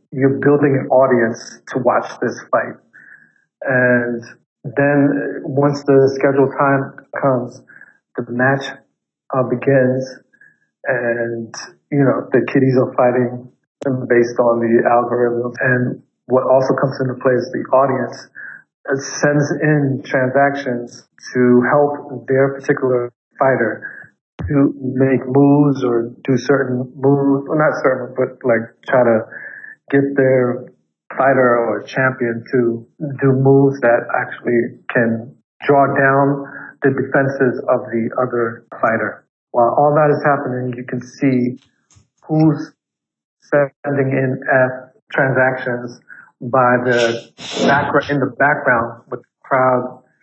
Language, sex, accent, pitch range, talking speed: English, male, American, 120-140 Hz, 120 wpm